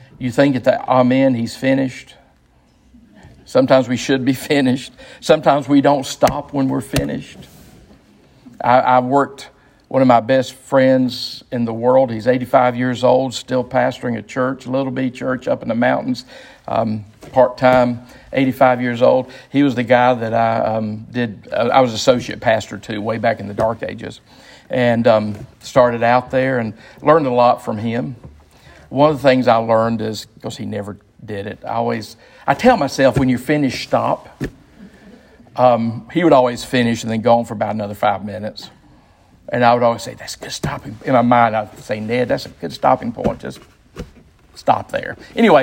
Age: 50-69